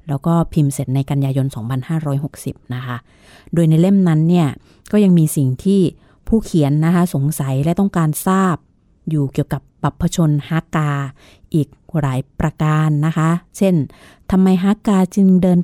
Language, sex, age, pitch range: Thai, female, 30-49, 145-175 Hz